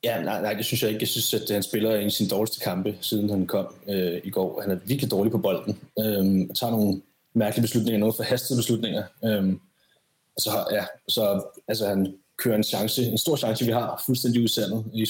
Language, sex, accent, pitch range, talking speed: Danish, male, native, 100-115 Hz, 225 wpm